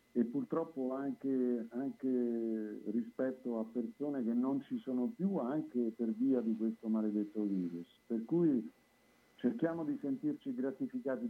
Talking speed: 135 wpm